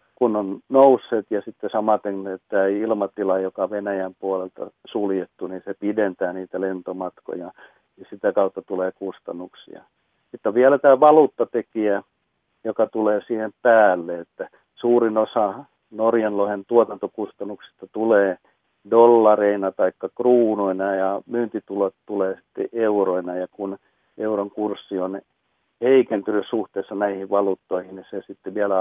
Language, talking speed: Finnish, 120 wpm